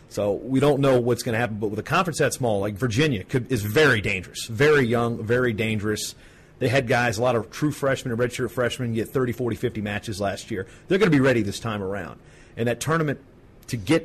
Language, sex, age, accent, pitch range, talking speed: English, male, 40-59, American, 115-135 Hz, 235 wpm